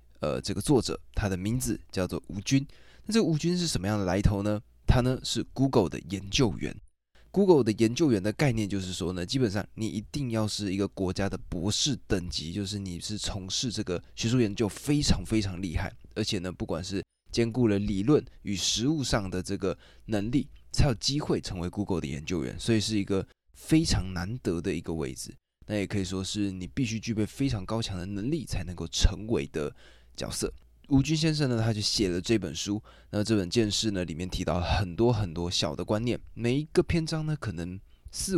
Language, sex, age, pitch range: Chinese, male, 20-39, 90-115 Hz